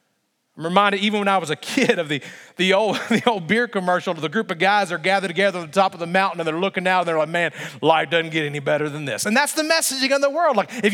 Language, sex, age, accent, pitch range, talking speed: English, male, 40-59, American, 195-265 Hz, 285 wpm